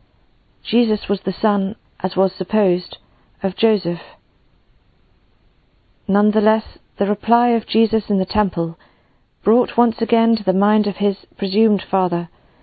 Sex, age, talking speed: female, 40-59, 130 wpm